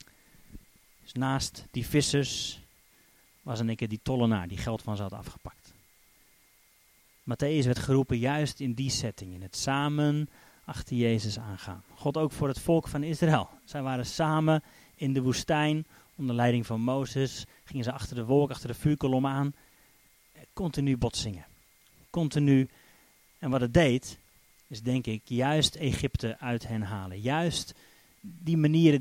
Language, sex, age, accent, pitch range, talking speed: Dutch, male, 30-49, Dutch, 120-150 Hz, 150 wpm